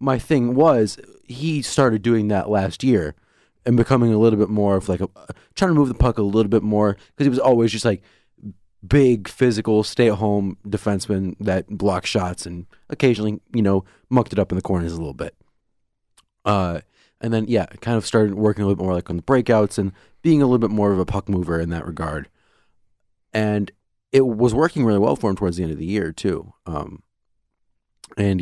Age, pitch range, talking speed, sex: 30-49, 95-115 Hz, 210 wpm, male